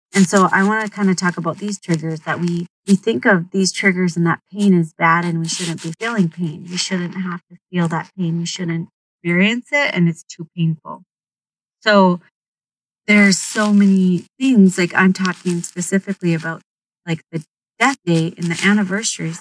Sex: female